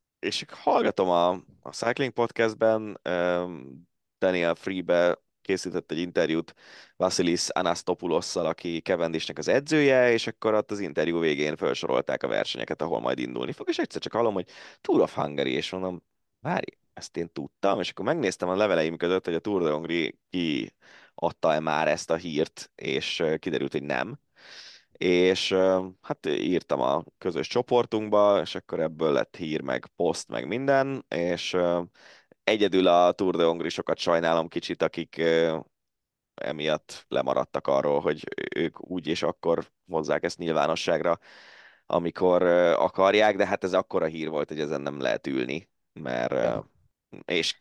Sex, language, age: male, Hungarian, 20-39